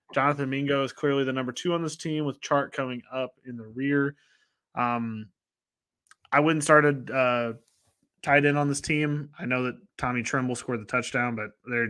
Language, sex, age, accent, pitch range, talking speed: English, male, 20-39, American, 120-150 Hz, 190 wpm